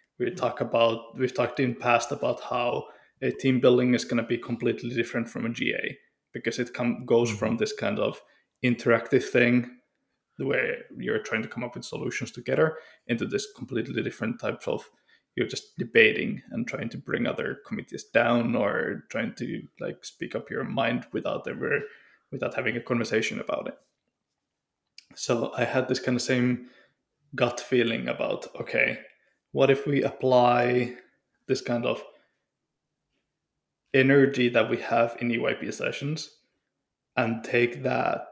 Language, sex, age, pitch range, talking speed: English, male, 20-39, 120-135 Hz, 155 wpm